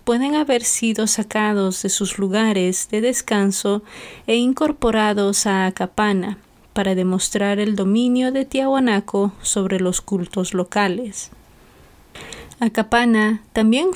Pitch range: 195-230 Hz